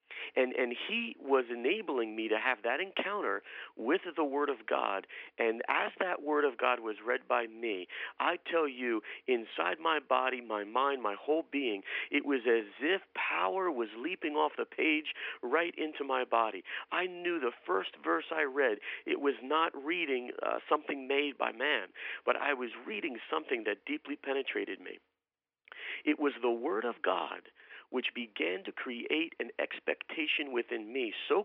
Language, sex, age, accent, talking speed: English, male, 50-69, American, 170 wpm